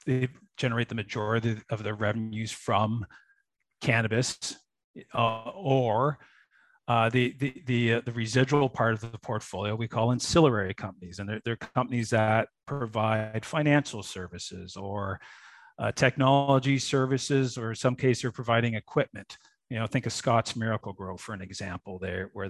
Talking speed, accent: 150 wpm, American